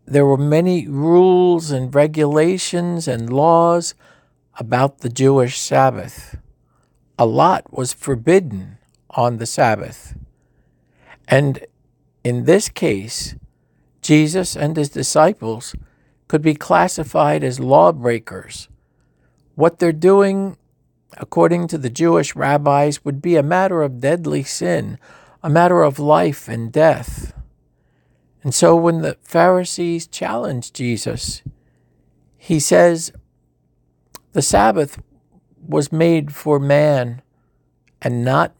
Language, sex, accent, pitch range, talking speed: English, male, American, 120-165 Hz, 110 wpm